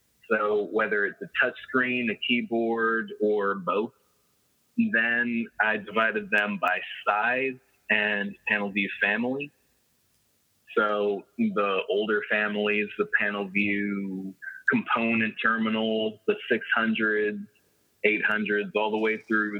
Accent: American